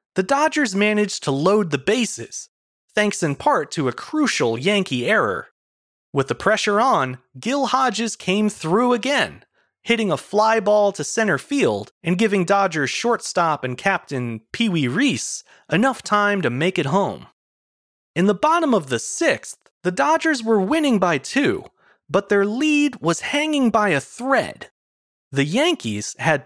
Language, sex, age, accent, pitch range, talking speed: English, male, 30-49, American, 155-240 Hz, 155 wpm